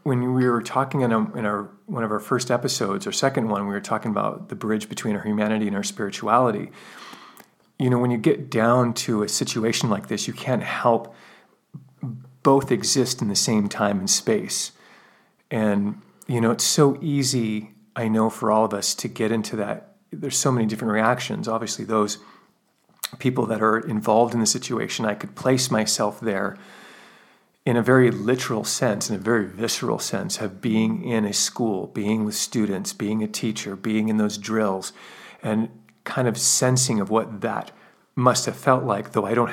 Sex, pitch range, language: male, 110-130 Hz, English